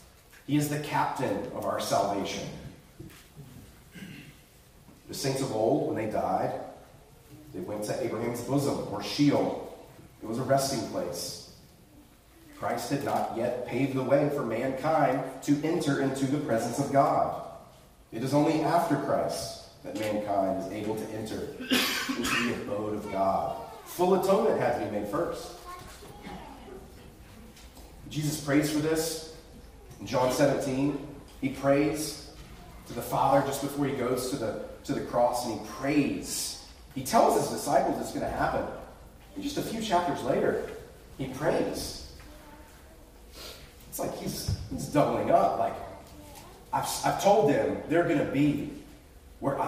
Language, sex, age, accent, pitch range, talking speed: English, male, 30-49, American, 120-150 Hz, 145 wpm